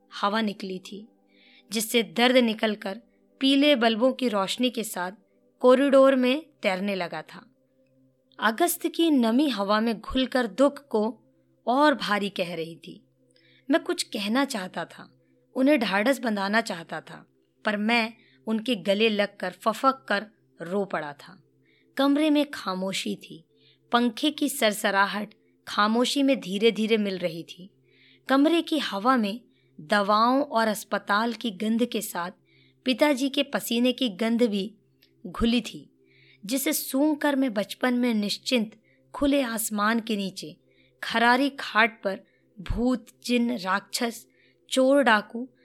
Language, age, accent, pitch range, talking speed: Hindi, 20-39, native, 200-260 Hz, 135 wpm